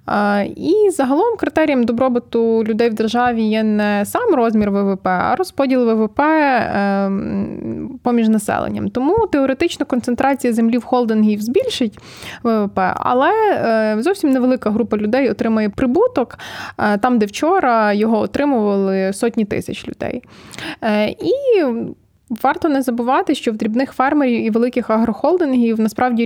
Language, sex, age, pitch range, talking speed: Ukrainian, female, 20-39, 215-265 Hz, 120 wpm